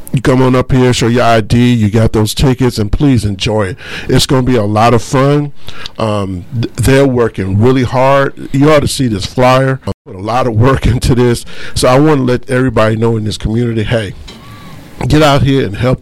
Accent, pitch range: American, 105-130 Hz